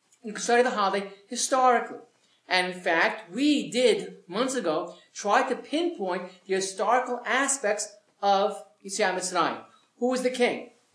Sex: male